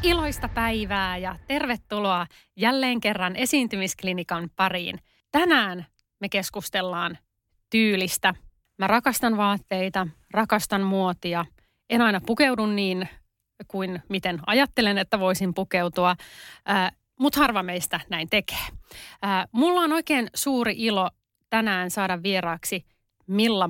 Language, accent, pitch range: Finnish, native, 185-230 Hz